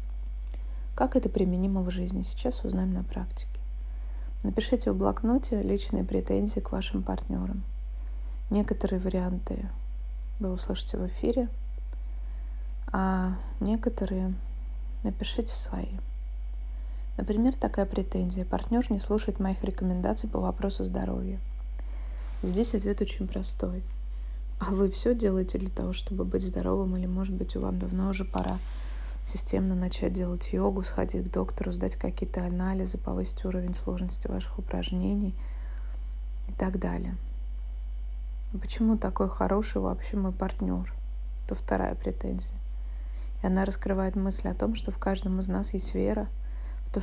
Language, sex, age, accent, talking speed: Russian, female, 20-39, native, 130 wpm